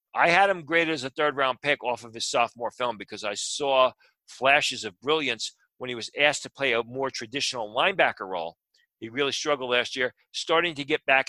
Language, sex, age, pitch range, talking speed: English, male, 40-59, 125-145 Hz, 205 wpm